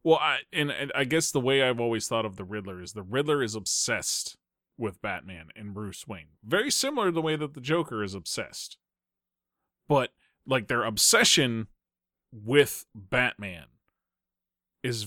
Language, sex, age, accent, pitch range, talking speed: English, male, 30-49, American, 105-135 Hz, 165 wpm